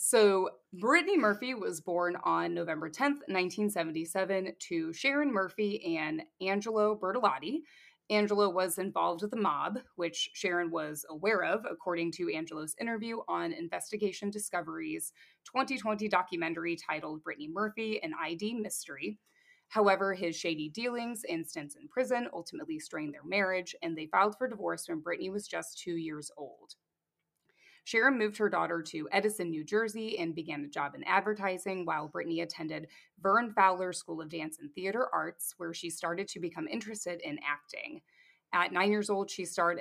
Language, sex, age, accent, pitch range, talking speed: English, female, 20-39, American, 165-215 Hz, 155 wpm